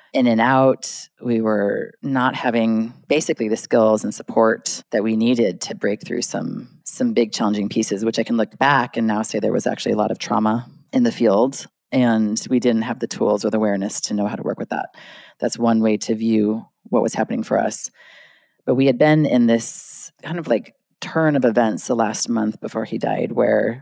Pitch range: 110-125 Hz